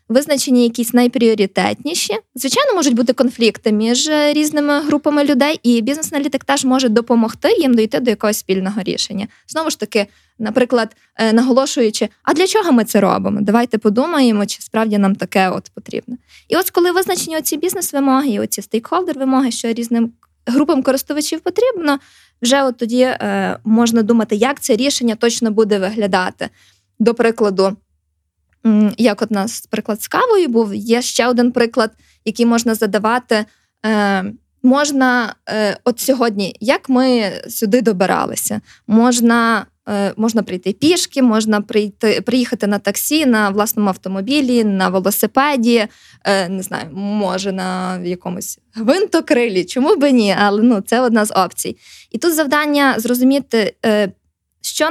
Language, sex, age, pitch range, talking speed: Ukrainian, female, 20-39, 210-270 Hz, 140 wpm